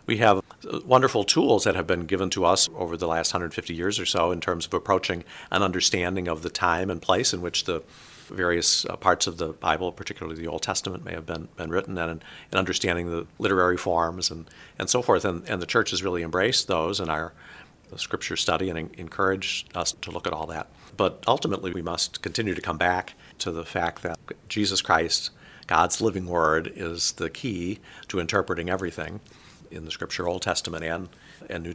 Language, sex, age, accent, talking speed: English, male, 50-69, American, 200 wpm